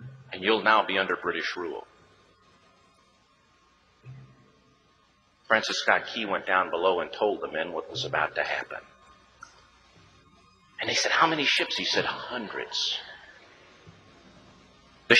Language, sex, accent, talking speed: English, male, American, 125 wpm